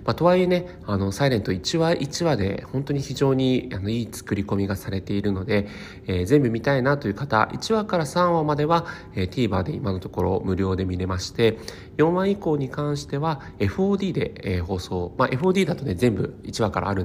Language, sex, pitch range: Japanese, male, 95-135 Hz